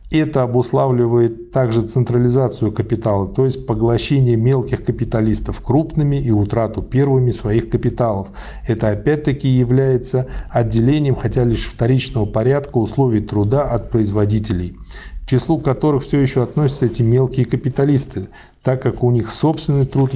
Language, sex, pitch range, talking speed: Russian, male, 110-135 Hz, 130 wpm